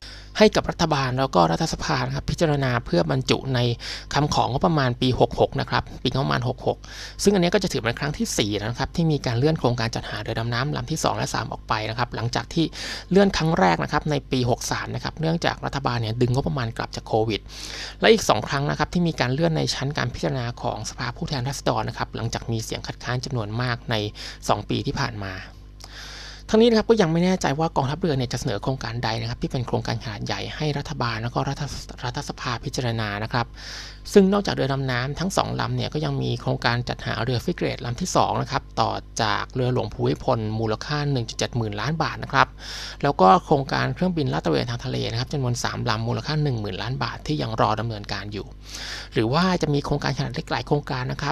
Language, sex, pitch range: Thai, male, 115-150 Hz